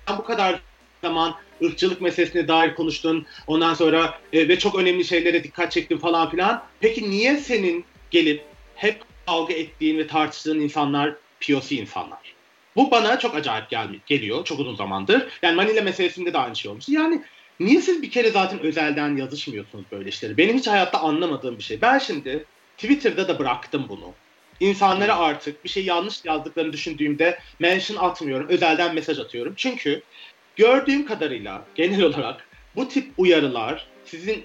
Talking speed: 160 wpm